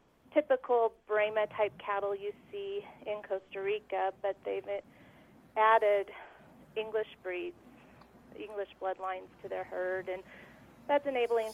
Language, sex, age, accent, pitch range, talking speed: English, female, 30-49, American, 200-240 Hz, 115 wpm